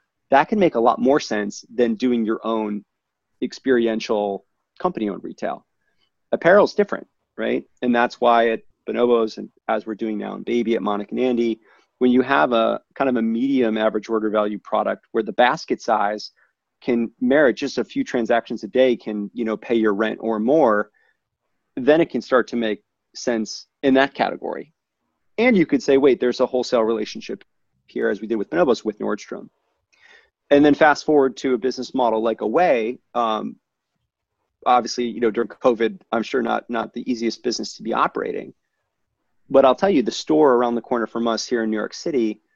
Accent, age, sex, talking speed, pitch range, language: American, 30-49, male, 190 wpm, 110-130 Hz, English